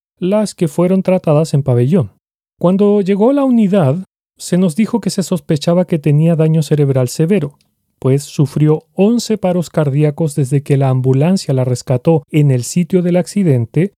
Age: 40-59